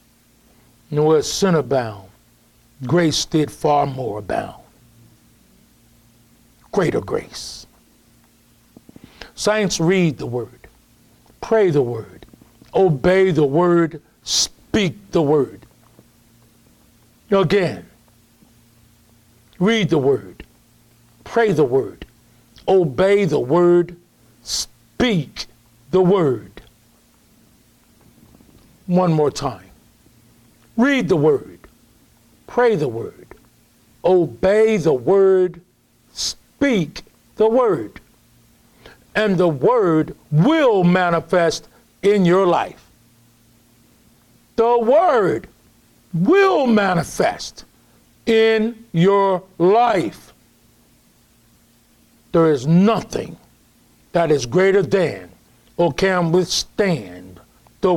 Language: English